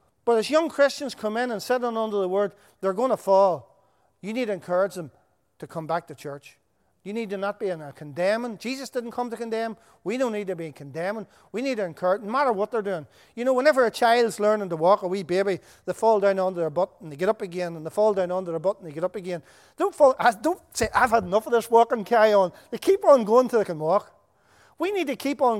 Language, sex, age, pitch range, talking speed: English, male, 40-59, 180-230 Hz, 270 wpm